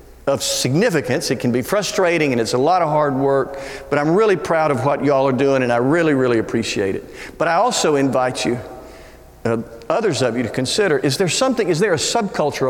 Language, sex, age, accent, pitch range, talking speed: English, male, 50-69, American, 135-205 Hz, 220 wpm